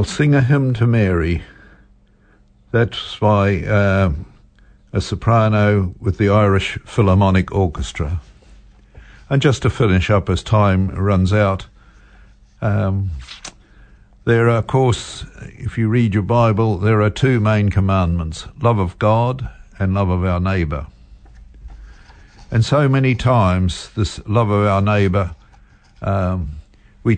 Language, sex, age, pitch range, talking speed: English, male, 60-79, 90-105 Hz, 130 wpm